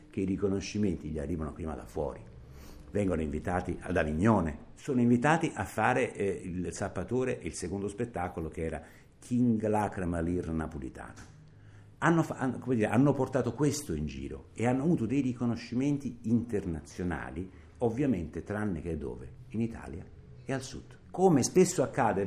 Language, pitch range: Italian, 90-135 Hz